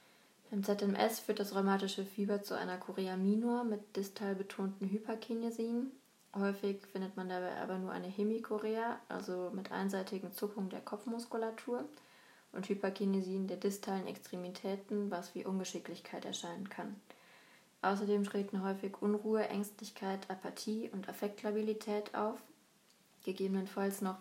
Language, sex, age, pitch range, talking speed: German, female, 20-39, 190-215 Hz, 120 wpm